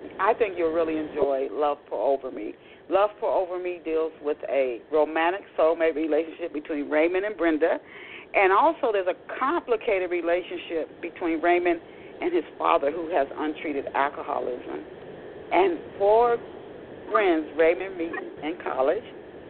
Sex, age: female, 40-59